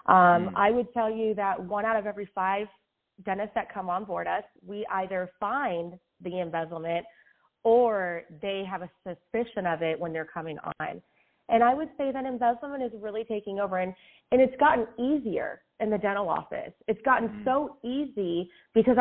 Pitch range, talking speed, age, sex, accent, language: 185-230 Hz, 180 wpm, 30-49, female, American, English